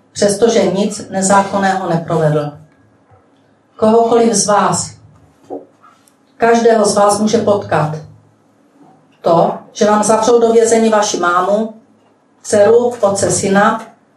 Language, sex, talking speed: Czech, female, 95 wpm